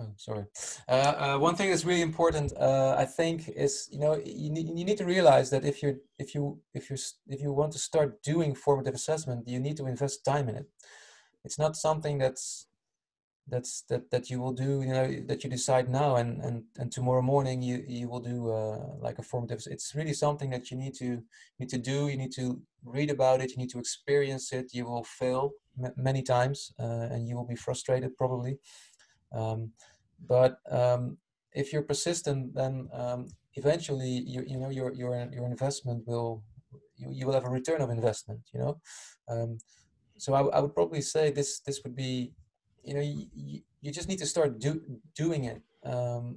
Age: 20-39